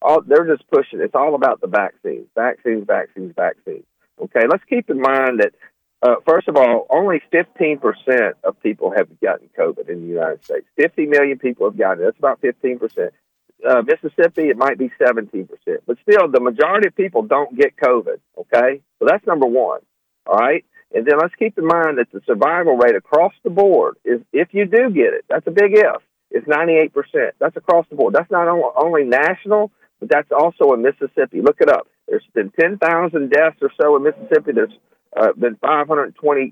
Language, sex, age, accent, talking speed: English, male, 50-69, American, 195 wpm